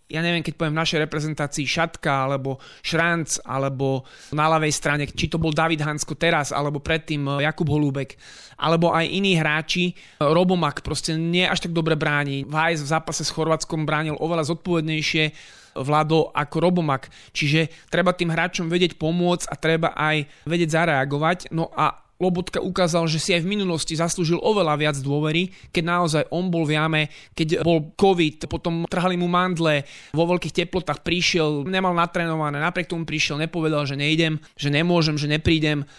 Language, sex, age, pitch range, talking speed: Slovak, male, 20-39, 150-170 Hz, 165 wpm